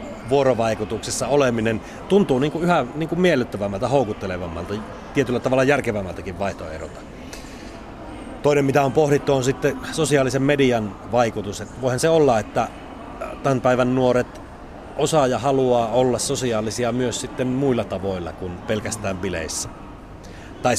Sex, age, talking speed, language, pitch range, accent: male, 30-49, 120 wpm, Finnish, 105-135 Hz, native